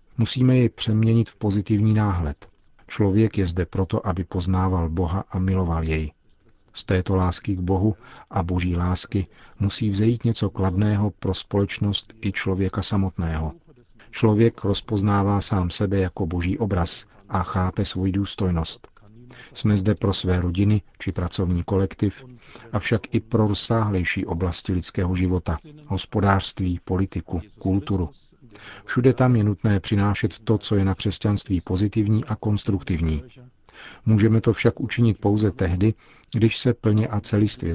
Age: 50-69